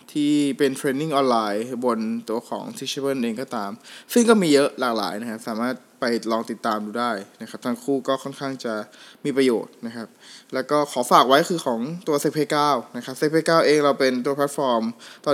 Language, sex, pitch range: Thai, male, 120-150 Hz